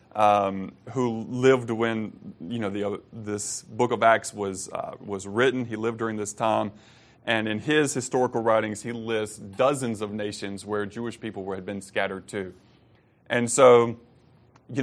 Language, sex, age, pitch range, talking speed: English, male, 30-49, 105-120 Hz, 170 wpm